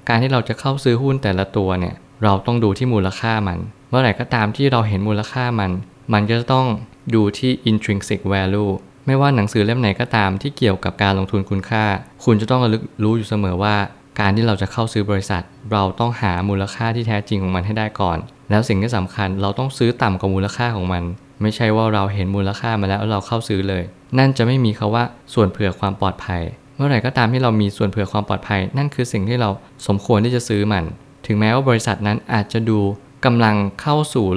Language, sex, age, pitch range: Thai, male, 20-39, 100-120 Hz